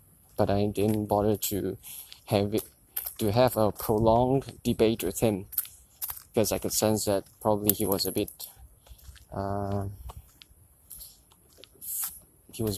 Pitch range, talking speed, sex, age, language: 95-105 Hz, 125 wpm, male, 20-39, English